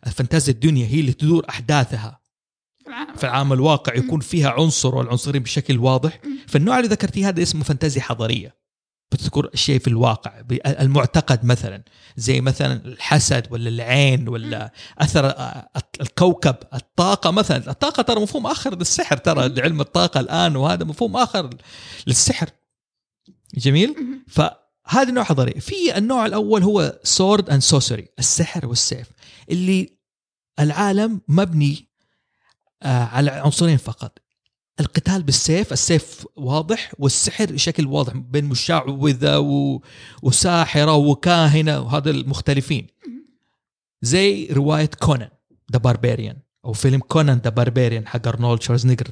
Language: Arabic